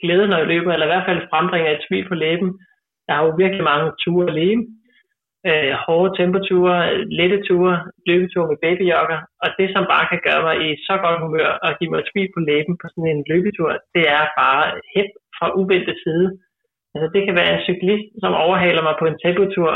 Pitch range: 160-195 Hz